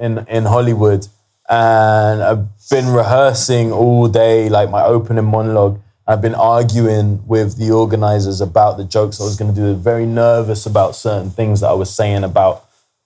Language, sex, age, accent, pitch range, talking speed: English, male, 20-39, British, 105-120 Hz, 180 wpm